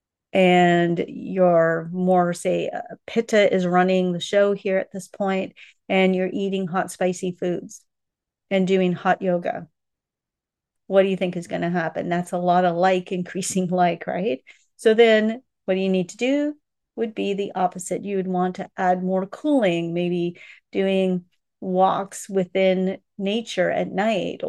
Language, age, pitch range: English, 40-59, 180-200 Hz